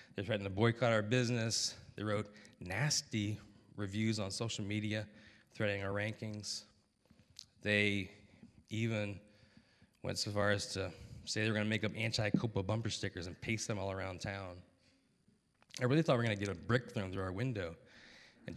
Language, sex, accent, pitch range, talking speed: English, male, American, 100-120 Hz, 170 wpm